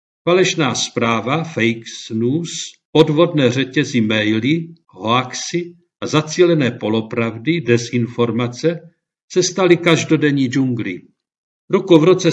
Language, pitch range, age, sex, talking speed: Czech, 125-160 Hz, 50-69, male, 90 wpm